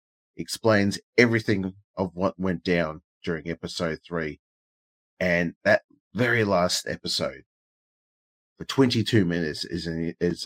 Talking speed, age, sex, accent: 115 wpm, 30-49, male, Australian